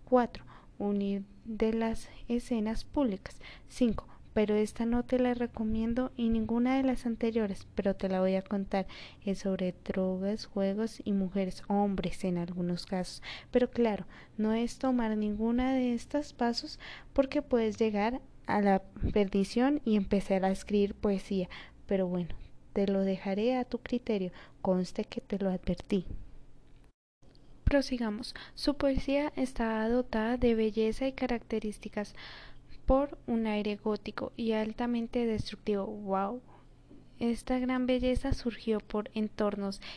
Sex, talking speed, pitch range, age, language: female, 135 wpm, 205-245 Hz, 20-39, Spanish